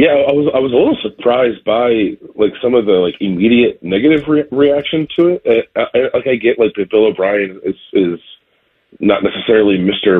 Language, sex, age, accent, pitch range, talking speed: English, male, 30-49, American, 95-150 Hz, 195 wpm